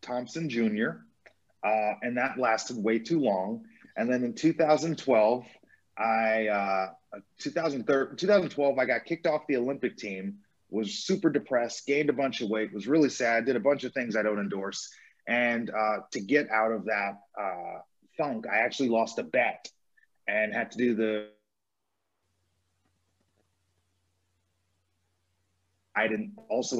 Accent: American